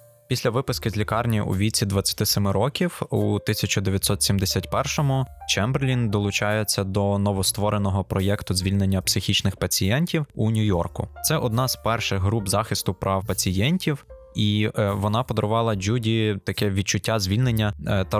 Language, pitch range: Ukrainian, 100-120 Hz